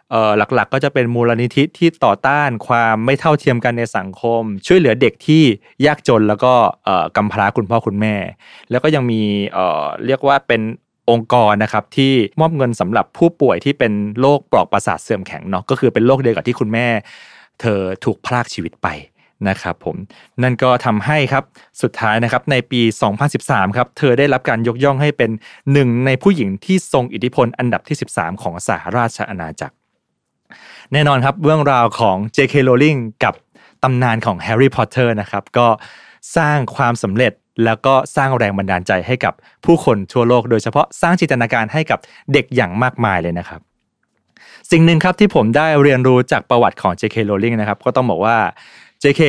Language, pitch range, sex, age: Thai, 110-140 Hz, male, 20-39